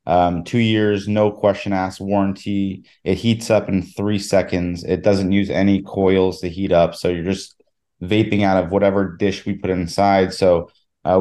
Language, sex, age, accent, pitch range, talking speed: English, male, 30-49, American, 95-105 Hz, 180 wpm